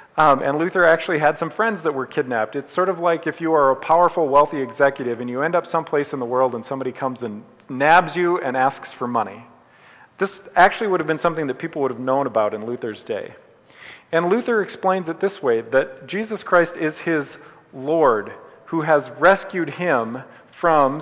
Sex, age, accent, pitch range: male, 40-59, American, 140-190 Hz